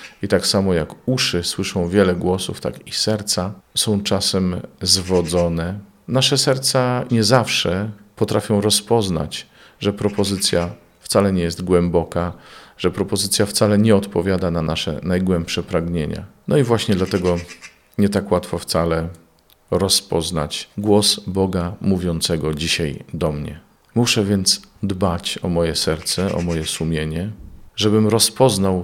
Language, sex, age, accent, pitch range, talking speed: Polish, male, 40-59, native, 85-105 Hz, 125 wpm